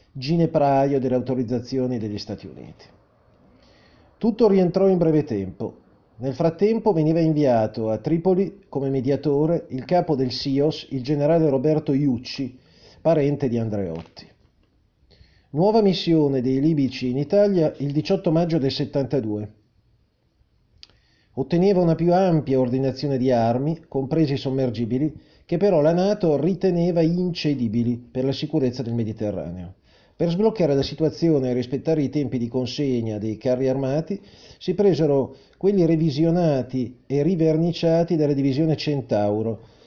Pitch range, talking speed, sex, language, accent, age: 125-170 Hz, 125 wpm, male, Italian, native, 40-59